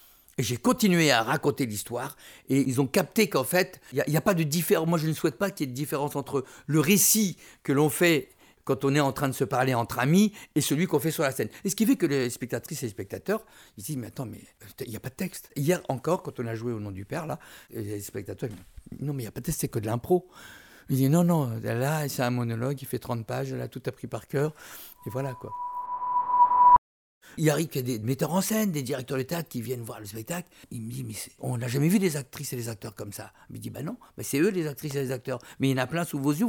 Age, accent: 60-79, French